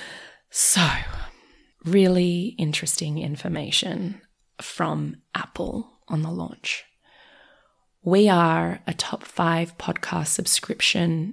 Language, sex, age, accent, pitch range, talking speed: English, female, 20-39, Australian, 165-200 Hz, 85 wpm